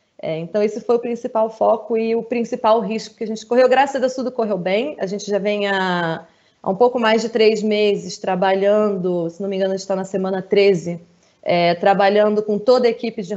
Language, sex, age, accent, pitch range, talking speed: Portuguese, female, 20-39, Brazilian, 200-245 Hz, 220 wpm